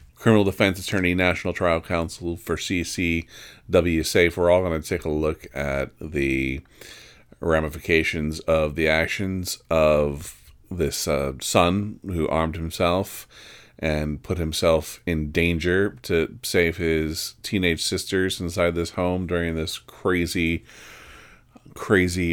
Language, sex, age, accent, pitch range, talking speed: English, male, 40-59, American, 75-90 Hz, 125 wpm